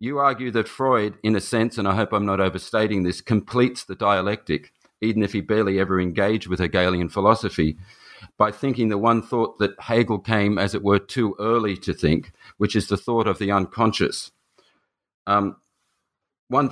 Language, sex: English, male